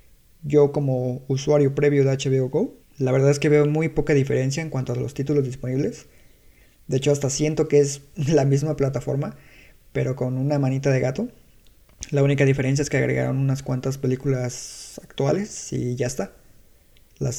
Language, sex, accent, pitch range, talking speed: Spanish, male, Mexican, 130-140 Hz, 175 wpm